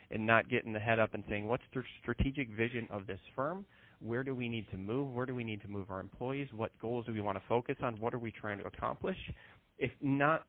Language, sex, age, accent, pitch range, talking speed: English, male, 30-49, American, 105-125 Hz, 255 wpm